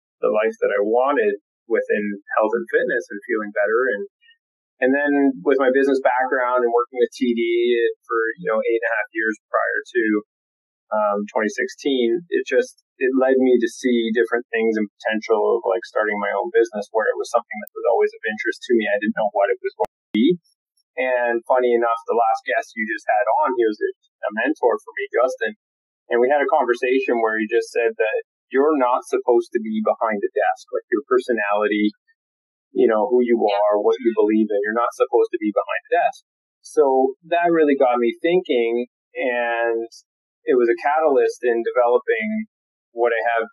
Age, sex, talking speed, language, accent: 30-49, male, 200 wpm, English, American